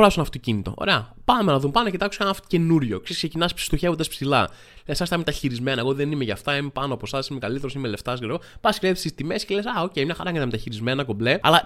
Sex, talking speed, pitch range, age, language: male, 235 wpm, 125-175 Hz, 20-39, Greek